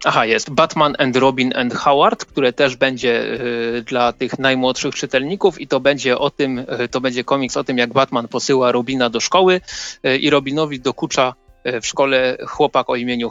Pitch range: 125-150 Hz